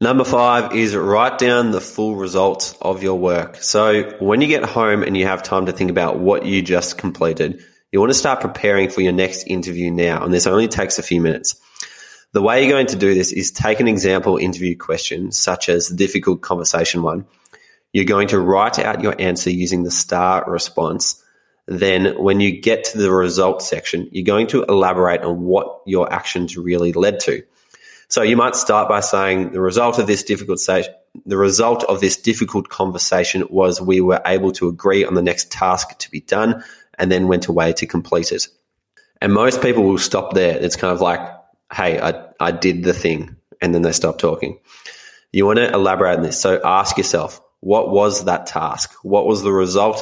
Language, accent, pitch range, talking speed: English, Australian, 90-100 Hz, 205 wpm